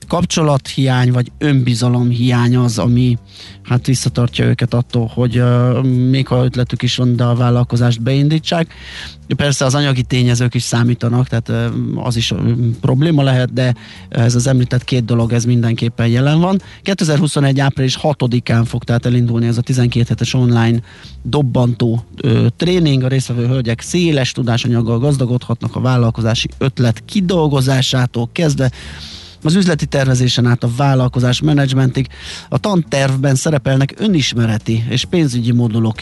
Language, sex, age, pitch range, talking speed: Hungarian, male, 30-49, 115-135 Hz, 140 wpm